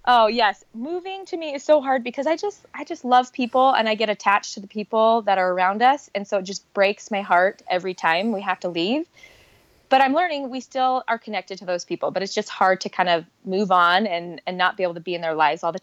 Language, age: English, 20-39